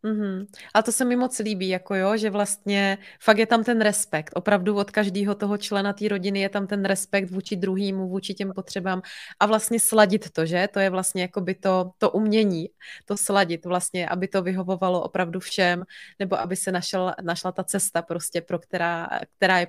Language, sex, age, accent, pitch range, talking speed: Czech, female, 20-39, native, 185-205 Hz, 190 wpm